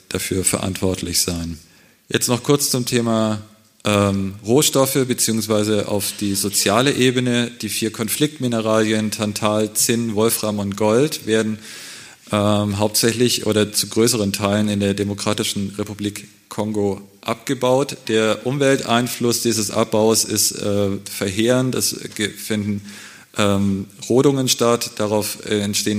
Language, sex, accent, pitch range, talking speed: German, male, German, 105-120 Hz, 115 wpm